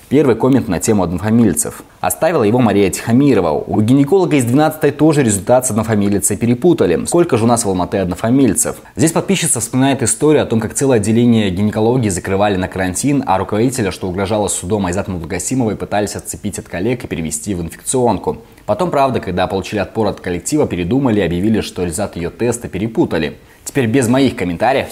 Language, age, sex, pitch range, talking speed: Russian, 20-39, male, 95-135 Hz, 170 wpm